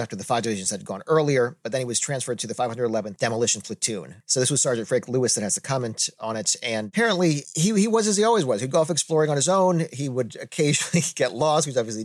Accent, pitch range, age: American, 115-145 Hz, 40-59